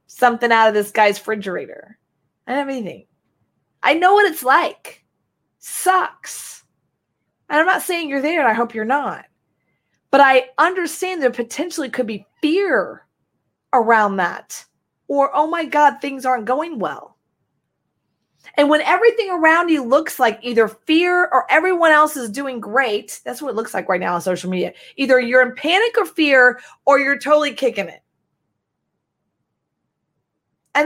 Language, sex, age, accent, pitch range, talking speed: English, female, 30-49, American, 250-335 Hz, 160 wpm